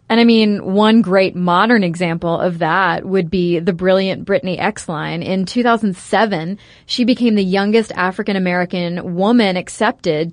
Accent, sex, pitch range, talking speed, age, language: American, female, 185-235 Hz, 145 wpm, 20-39, English